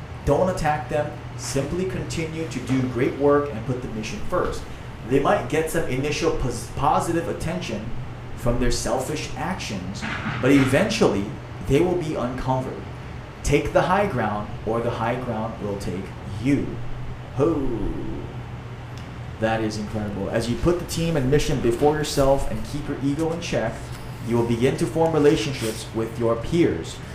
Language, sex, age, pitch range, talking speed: English, male, 30-49, 120-155 Hz, 150 wpm